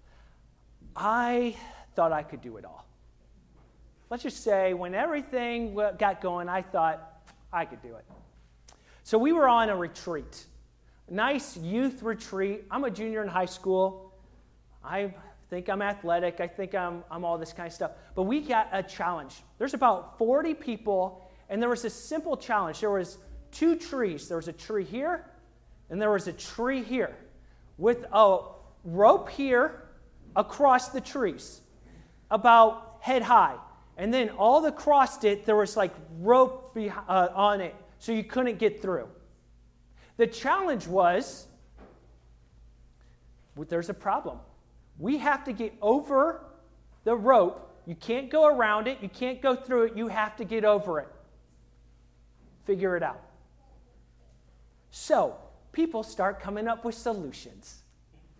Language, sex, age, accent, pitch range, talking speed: English, male, 40-59, American, 170-240 Hz, 145 wpm